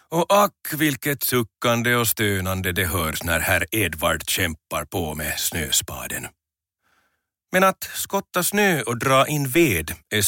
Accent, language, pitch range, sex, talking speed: native, Finnish, 95-135 Hz, male, 140 wpm